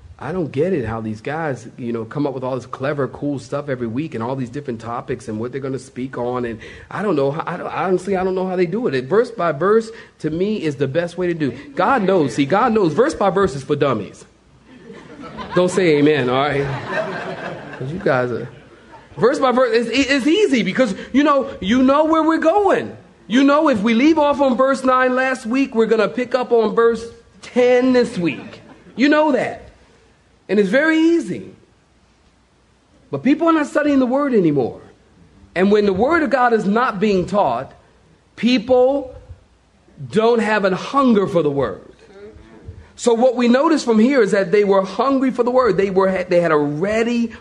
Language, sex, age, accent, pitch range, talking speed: English, male, 40-59, American, 145-230 Hz, 210 wpm